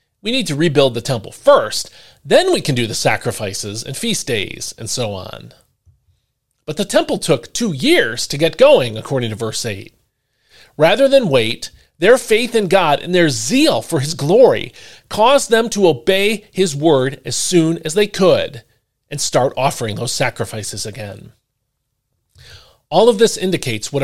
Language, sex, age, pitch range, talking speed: English, male, 40-59, 120-190 Hz, 165 wpm